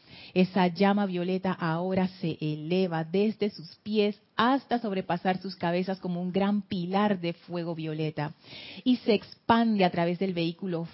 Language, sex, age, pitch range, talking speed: Spanish, female, 30-49, 165-200 Hz, 150 wpm